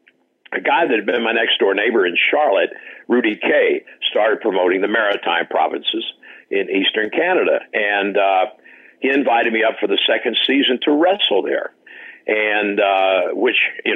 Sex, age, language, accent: male, 60-79, English, American